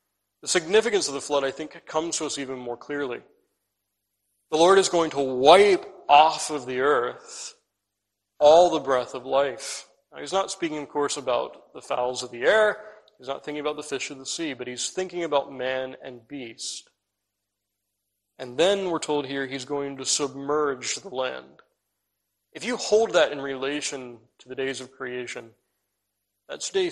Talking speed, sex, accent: 175 wpm, male, American